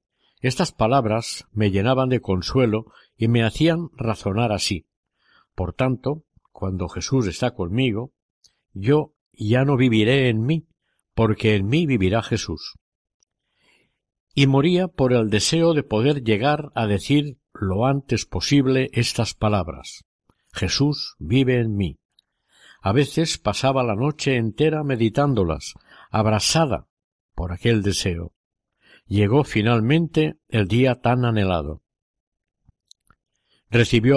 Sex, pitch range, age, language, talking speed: male, 105-140 Hz, 60-79, Spanish, 115 wpm